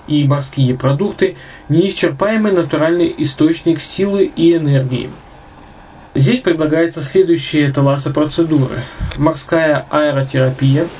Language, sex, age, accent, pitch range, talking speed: Russian, male, 20-39, native, 140-170 Hz, 85 wpm